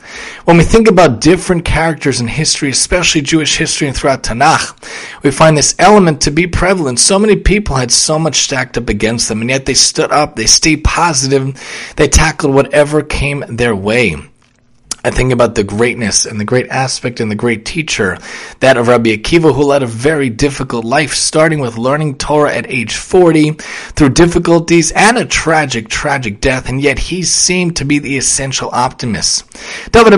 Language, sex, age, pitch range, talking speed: English, male, 30-49, 125-160 Hz, 185 wpm